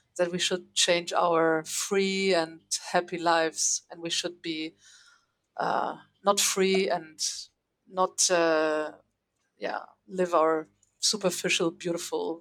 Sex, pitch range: female, 165-195 Hz